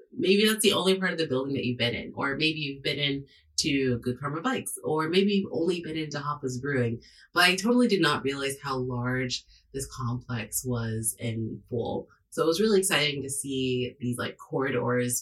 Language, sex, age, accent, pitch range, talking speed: English, female, 30-49, American, 125-165 Hz, 205 wpm